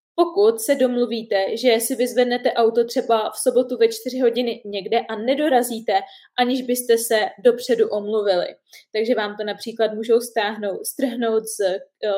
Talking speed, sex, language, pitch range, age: 145 wpm, female, Czech, 225-265 Hz, 20-39